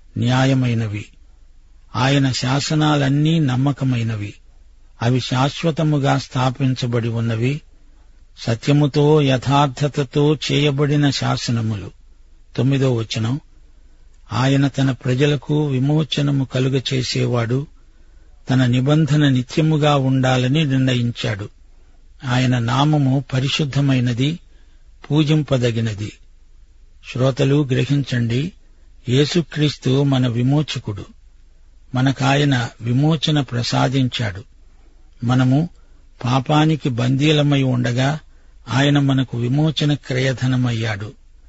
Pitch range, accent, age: 115-140 Hz, native, 50-69